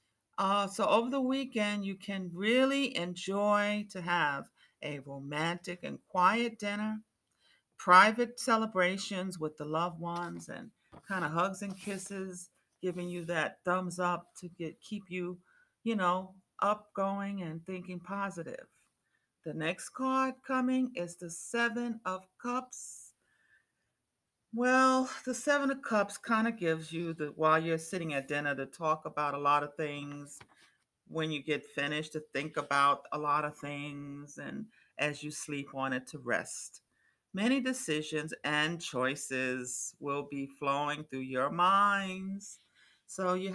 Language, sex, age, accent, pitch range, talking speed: English, female, 50-69, American, 155-215 Hz, 145 wpm